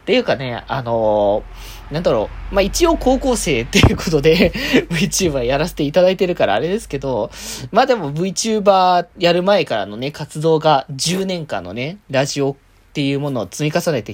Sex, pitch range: male, 125-180 Hz